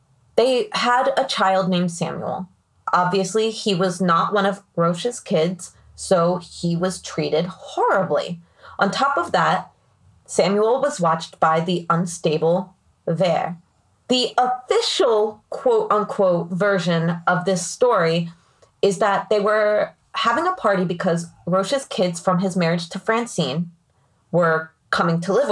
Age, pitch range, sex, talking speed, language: 20-39, 170-210 Hz, female, 135 wpm, English